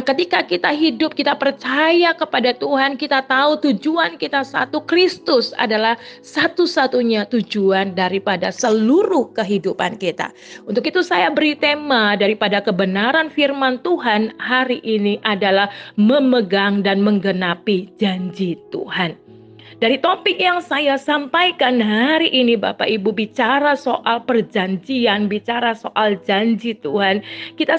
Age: 30-49